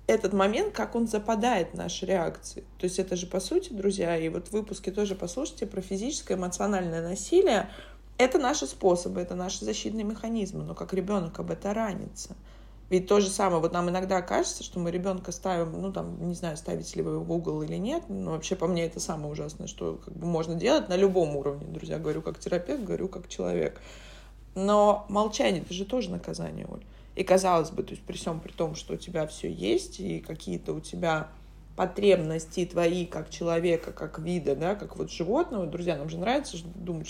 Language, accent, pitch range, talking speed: Russian, native, 170-205 Hz, 200 wpm